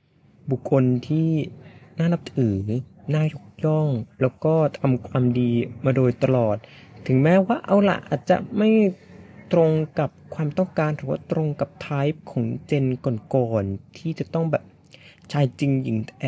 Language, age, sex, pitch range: Thai, 20-39, male, 120-155 Hz